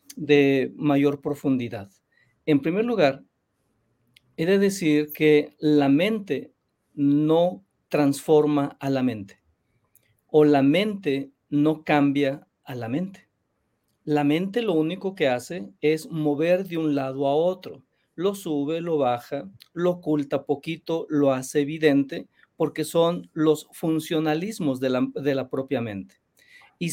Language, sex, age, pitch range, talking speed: Spanish, male, 50-69, 140-170 Hz, 130 wpm